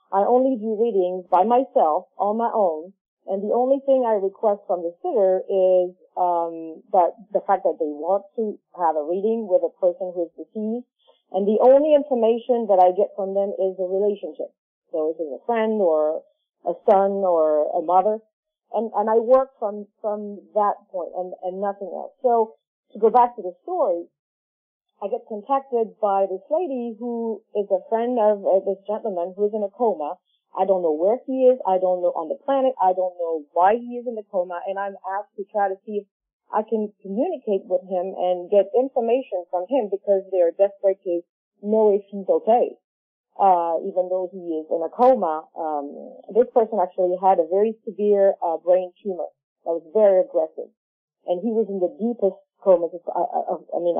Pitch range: 180-225 Hz